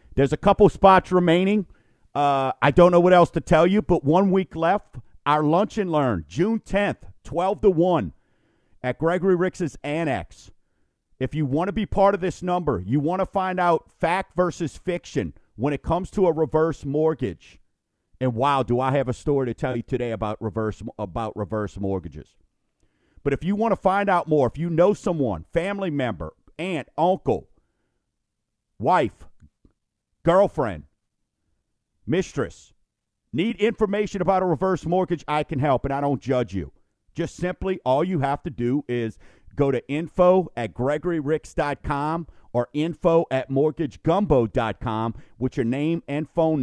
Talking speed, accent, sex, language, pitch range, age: 160 wpm, American, male, English, 120-175 Hz, 50-69